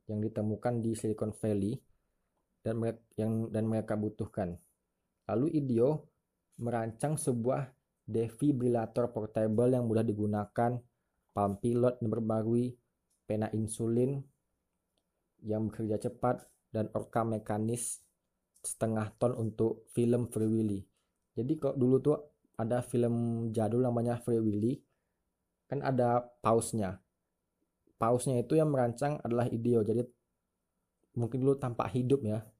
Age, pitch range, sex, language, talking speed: 20-39, 110-125 Hz, male, Indonesian, 115 wpm